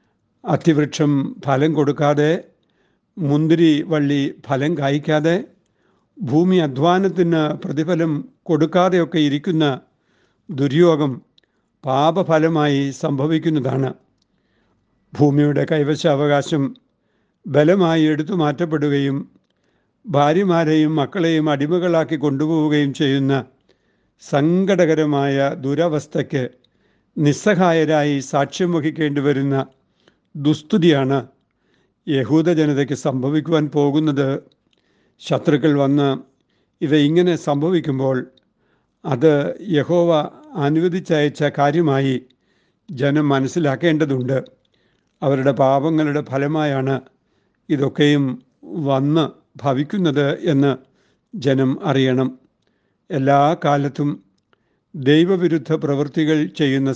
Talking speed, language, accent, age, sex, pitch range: 65 wpm, Malayalam, native, 60-79, male, 140-160 Hz